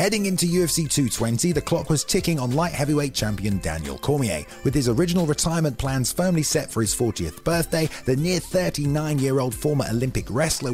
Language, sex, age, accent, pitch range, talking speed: English, male, 30-49, British, 115-165 Hz, 175 wpm